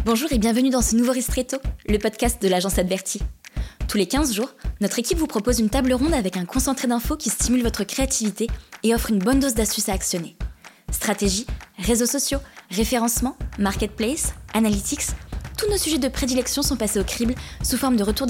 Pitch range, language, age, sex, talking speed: 200-250 Hz, French, 20-39, female, 190 wpm